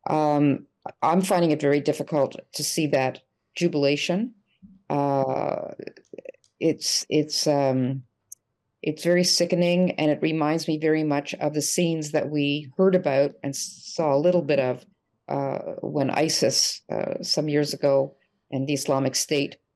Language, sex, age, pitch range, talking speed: English, female, 50-69, 140-165 Hz, 145 wpm